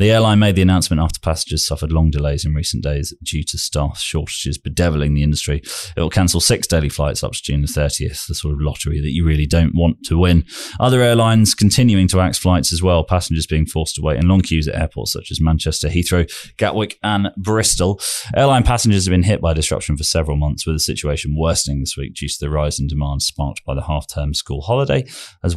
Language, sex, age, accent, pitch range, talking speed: English, male, 20-39, British, 75-90 Hz, 225 wpm